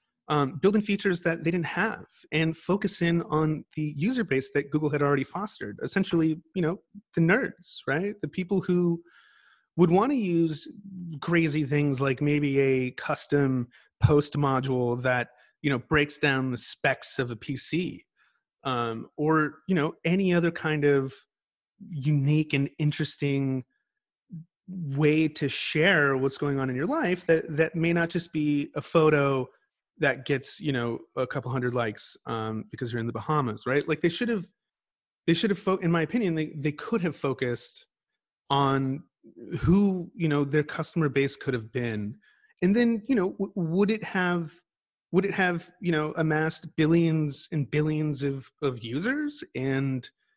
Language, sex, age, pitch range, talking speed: English, male, 30-49, 140-180 Hz, 165 wpm